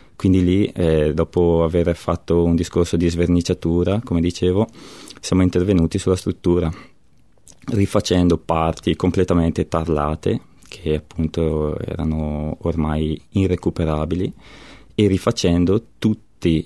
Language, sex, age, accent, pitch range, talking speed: Italian, male, 20-39, native, 80-95 Hz, 100 wpm